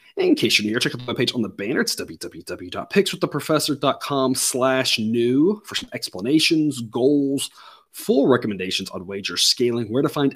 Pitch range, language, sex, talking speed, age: 115-155 Hz, English, male, 145 wpm, 30-49